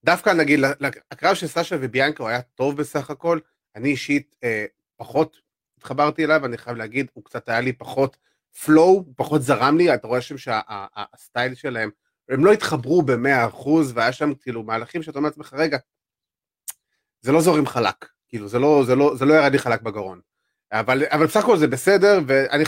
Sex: male